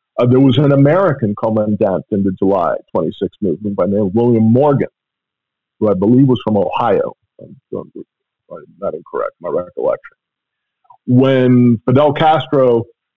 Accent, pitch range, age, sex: American, 115-140 Hz, 50-69, male